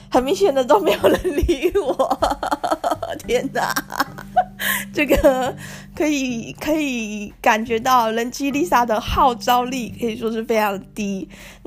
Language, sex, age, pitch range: Chinese, female, 20-39, 220-290 Hz